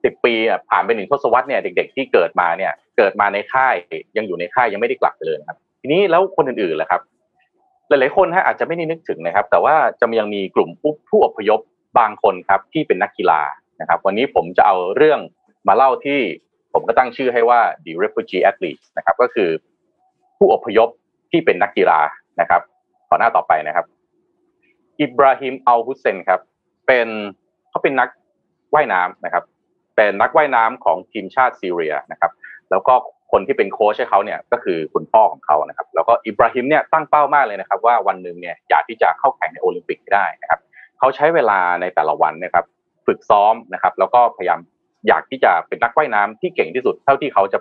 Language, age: Thai, 30-49